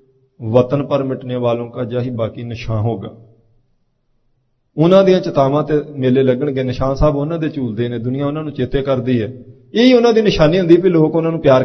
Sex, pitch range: male, 130-165 Hz